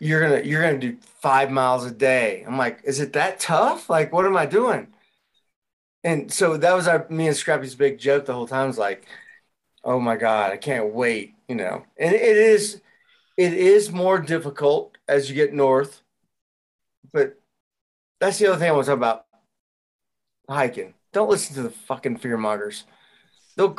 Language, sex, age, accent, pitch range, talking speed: English, male, 30-49, American, 135-195 Hz, 190 wpm